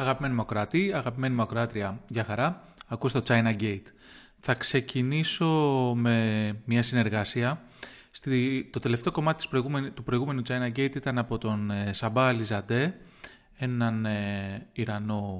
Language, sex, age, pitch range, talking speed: English, male, 30-49, 110-135 Hz, 115 wpm